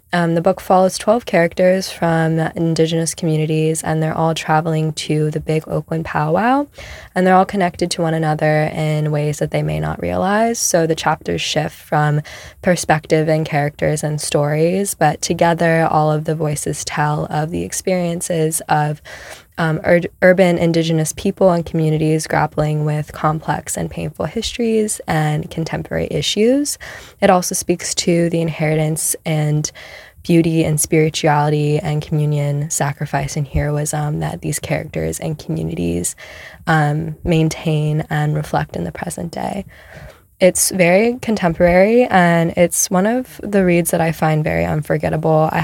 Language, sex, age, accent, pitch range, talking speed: English, female, 10-29, American, 150-175 Hz, 145 wpm